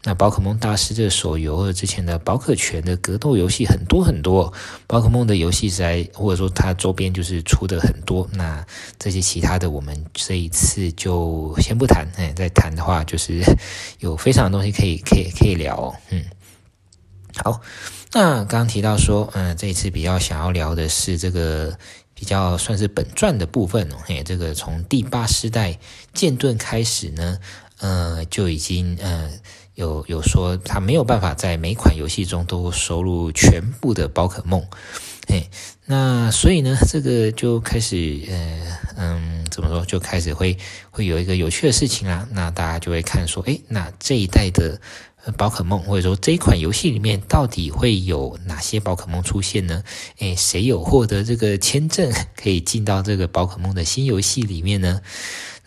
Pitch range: 85-105 Hz